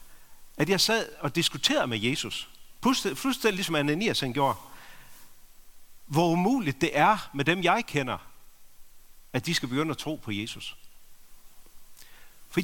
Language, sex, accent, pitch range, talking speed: Danish, male, native, 115-170 Hz, 135 wpm